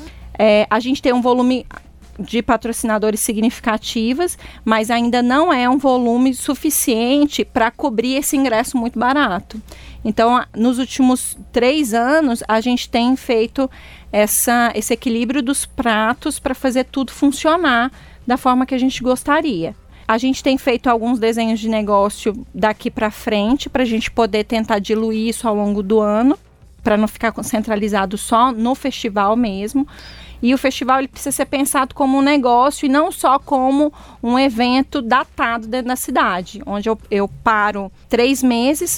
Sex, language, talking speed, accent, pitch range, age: female, Portuguese, 155 wpm, Brazilian, 220-270 Hz, 30-49